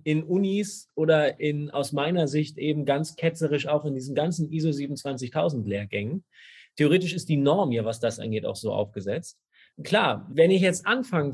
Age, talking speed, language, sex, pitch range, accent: 30-49, 165 wpm, German, male, 125-165 Hz, German